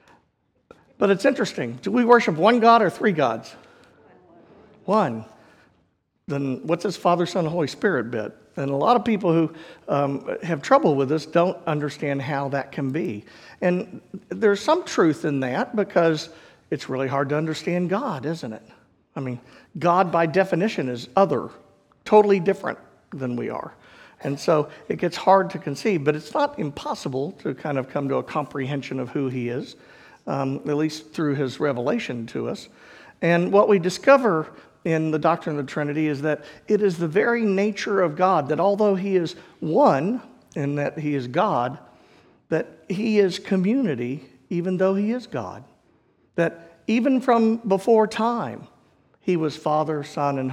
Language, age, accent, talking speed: English, 50-69, American, 170 wpm